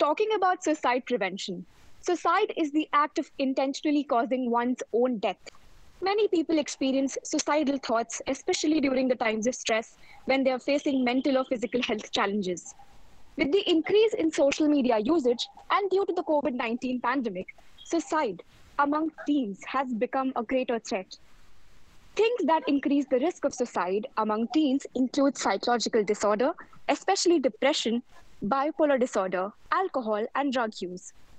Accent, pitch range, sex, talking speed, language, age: Indian, 235-310 Hz, female, 145 wpm, English, 20-39